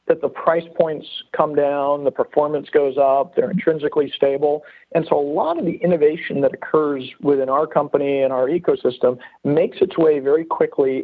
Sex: male